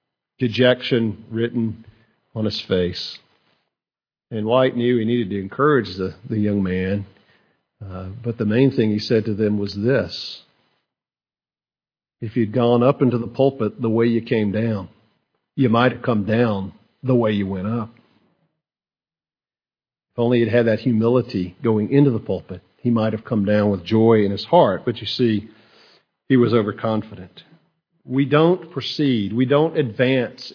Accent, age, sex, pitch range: American, 50-69, male, 105-135 Hz